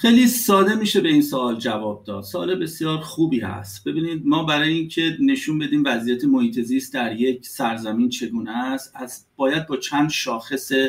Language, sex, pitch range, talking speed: Persian, male, 120-170 Hz, 165 wpm